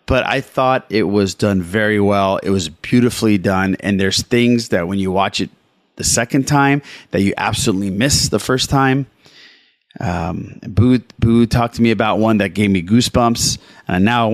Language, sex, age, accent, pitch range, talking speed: English, male, 30-49, American, 100-130 Hz, 190 wpm